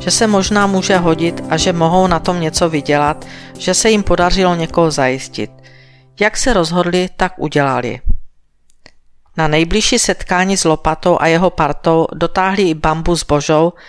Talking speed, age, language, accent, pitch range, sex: 155 wpm, 50-69, Czech, native, 150-180 Hz, female